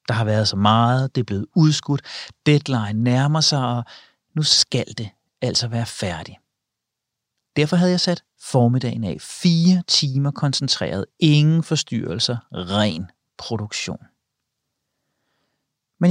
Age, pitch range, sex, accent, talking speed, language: 40-59, 115-155 Hz, male, native, 125 wpm, Danish